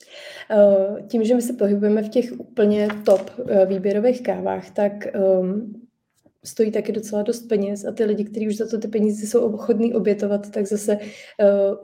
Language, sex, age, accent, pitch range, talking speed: Czech, female, 20-39, native, 195-220 Hz, 175 wpm